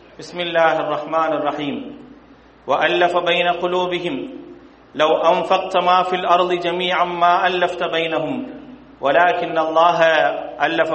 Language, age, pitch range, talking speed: English, 40-59, 155-175 Hz, 105 wpm